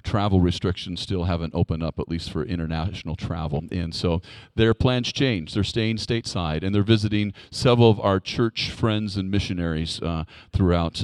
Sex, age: male, 40-59